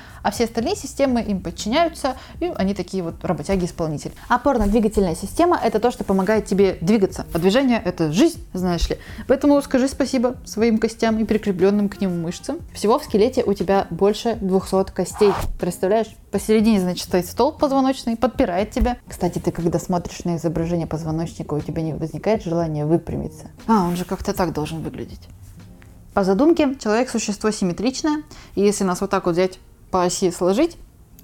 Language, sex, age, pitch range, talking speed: Russian, female, 20-39, 180-240 Hz, 170 wpm